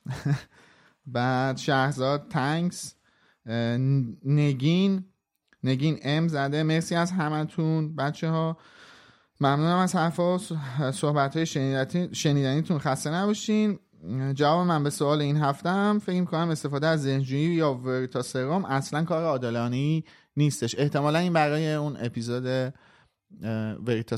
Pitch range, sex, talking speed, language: 120-155 Hz, male, 105 wpm, Persian